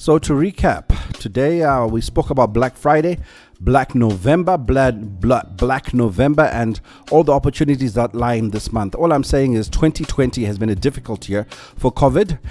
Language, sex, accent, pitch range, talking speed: English, male, South African, 115-145 Hz, 180 wpm